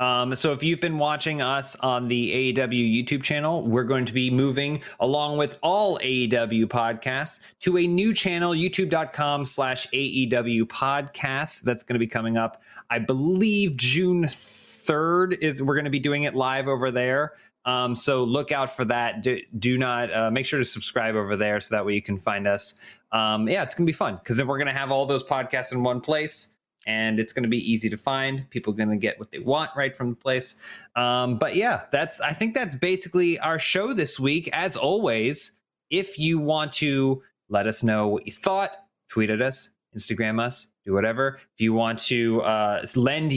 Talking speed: 205 wpm